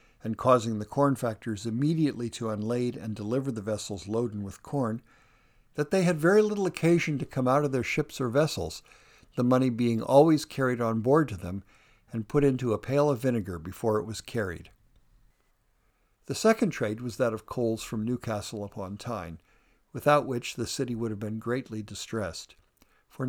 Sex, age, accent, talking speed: male, 60-79, American, 180 wpm